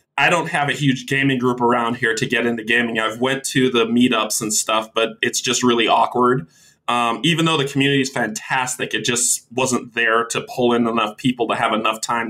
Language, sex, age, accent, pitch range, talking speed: English, male, 20-39, American, 120-145 Hz, 220 wpm